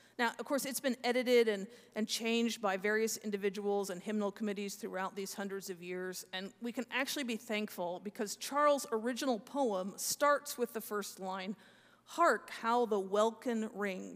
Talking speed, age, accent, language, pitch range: 170 wpm, 40-59, American, English, 205-245 Hz